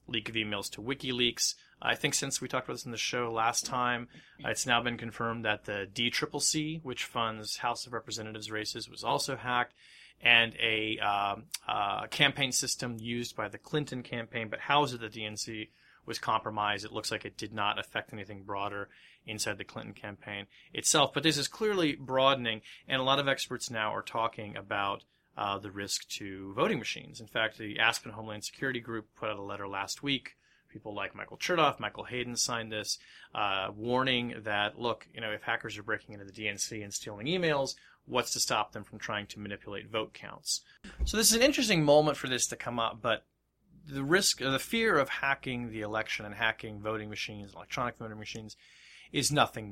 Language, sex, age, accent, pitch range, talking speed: English, male, 30-49, American, 105-130 Hz, 195 wpm